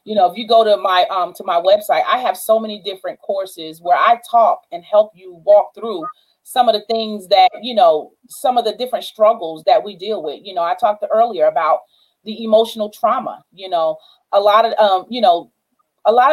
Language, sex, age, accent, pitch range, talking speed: English, female, 30-49, American, 200-295 Hz, 220 wpm